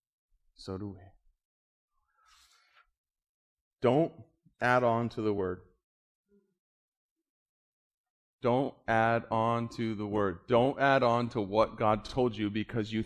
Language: English